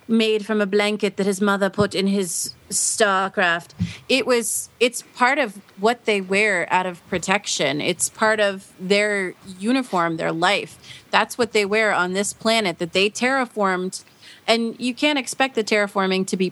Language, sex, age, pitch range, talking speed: English, female, 30-49, 185-225 Hz, 170 wpm